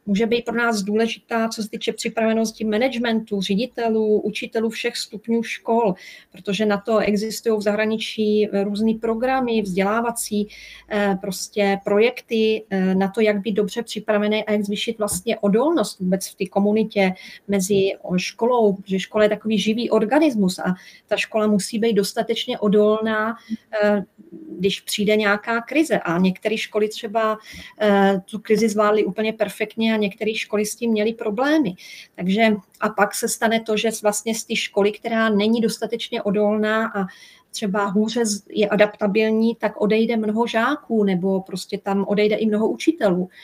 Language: Czech